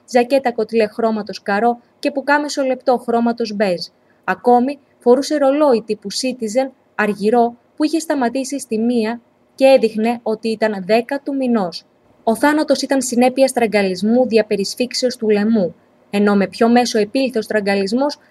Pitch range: 215-265 Hz